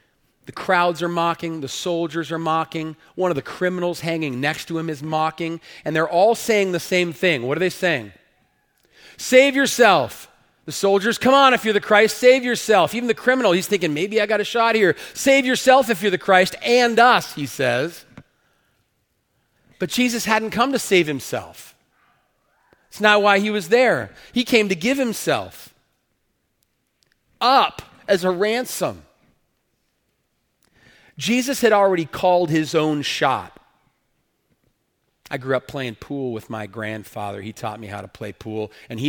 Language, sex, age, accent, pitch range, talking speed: English, male, 40-59, American, 125-195 Hz, 165 wpm